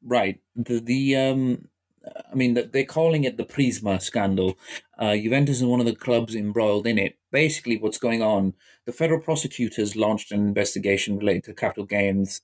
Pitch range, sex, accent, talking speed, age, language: 100-120 Hz, male, British, 175 wpm, 30-49, English